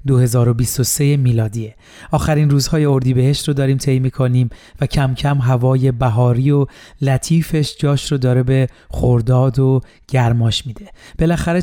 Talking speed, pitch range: 135 wpm, 125-145 Hz